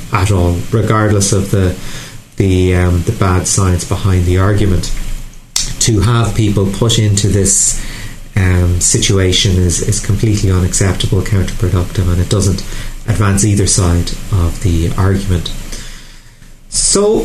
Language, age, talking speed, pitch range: English, 30-49, 125 wpm, 95-115 Hz